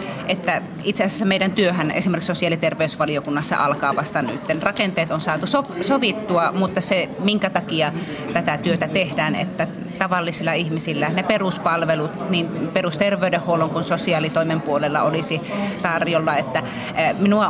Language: Finnish